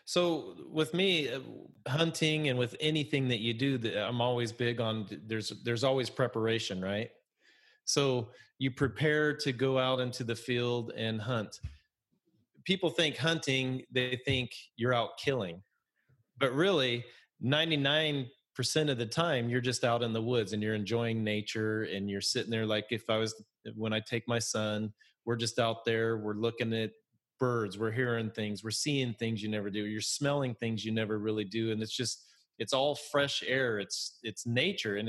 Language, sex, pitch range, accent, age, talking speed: English, male, 110-135 Hz, American, 30-49, 175 wpm